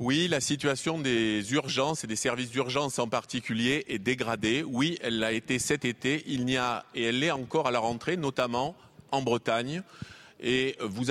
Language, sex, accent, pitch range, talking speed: French, male, French, 120-145 Hz, 185 wpm